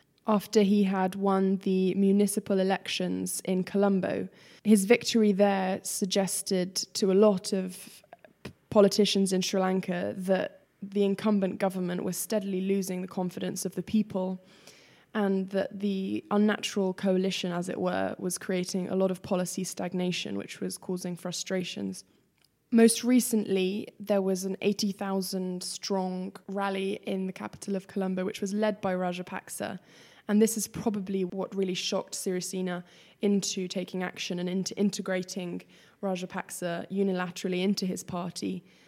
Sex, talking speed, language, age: female, 135 wpm, English, 10-29